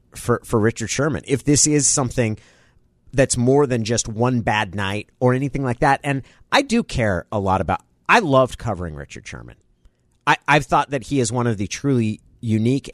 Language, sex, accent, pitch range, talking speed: English, male, American, 115-155 Hz, 195 wpm